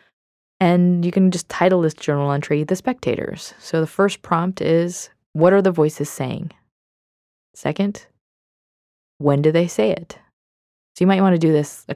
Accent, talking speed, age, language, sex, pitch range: American, 170 wpm, 20-39, English, female, 145-180 Hz